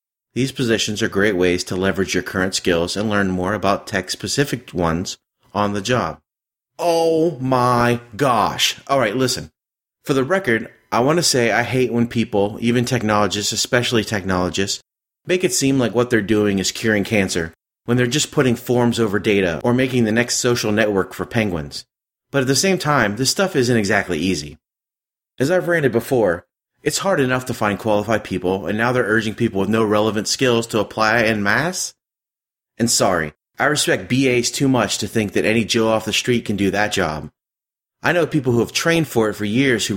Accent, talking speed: American, 190 wpm